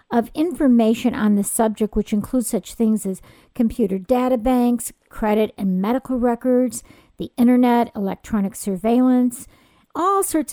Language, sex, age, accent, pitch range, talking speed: English, female, 50-69, American, 210-255 Hz, 130 wpm